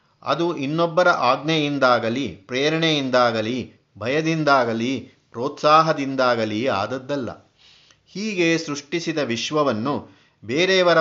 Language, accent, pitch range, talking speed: Kannada, native, 125-165 Hz, 60 wpm